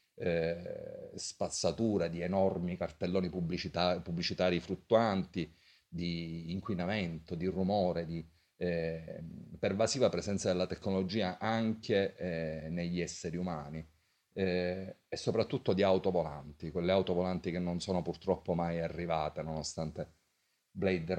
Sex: male